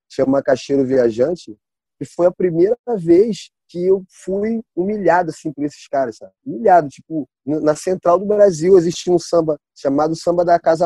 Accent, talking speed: Brazilian, 165 wpm